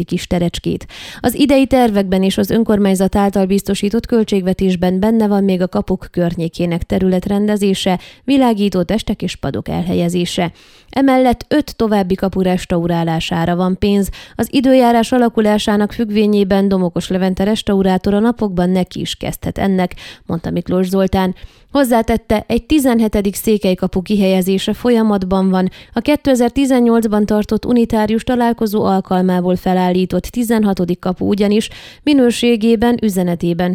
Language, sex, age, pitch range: Hungarian, female, 20-39, 185-225 Hz